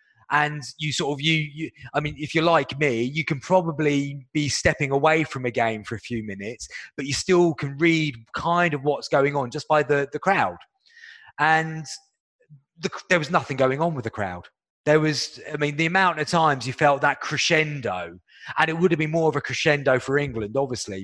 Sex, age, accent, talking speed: male, 30-49, British, 210 wpm